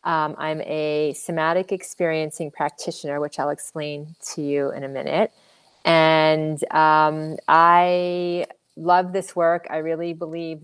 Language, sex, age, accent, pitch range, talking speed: English, female, 30-49, American, 155-180 Hz, 130 wpm